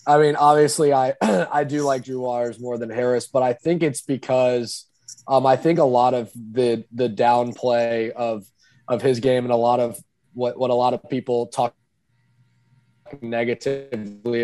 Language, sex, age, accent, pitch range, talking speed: English, male, 20-39, American, 120-135 Hz, 175 wpm